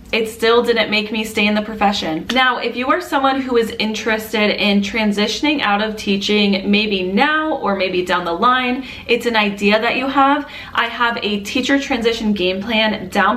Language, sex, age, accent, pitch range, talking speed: English, female, 20-39, American, 200-230 Hz, 195 wpm